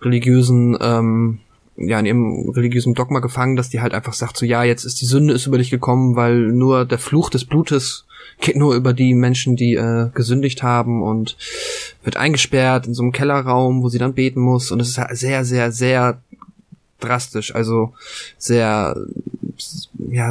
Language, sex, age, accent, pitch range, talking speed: German, male, 20-39, German, 120-130 Hz, 180 wpm